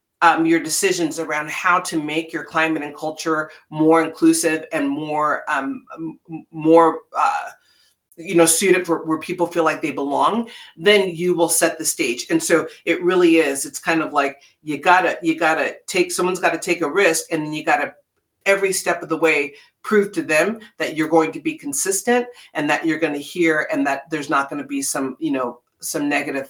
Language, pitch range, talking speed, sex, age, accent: English, 150-180 Hz, 200 wpm, female, 40-59, American